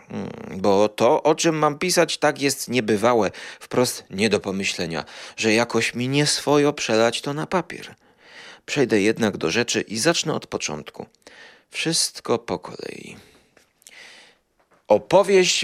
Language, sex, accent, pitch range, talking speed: Polish, male, native, 105-140 Hz, 130 wpm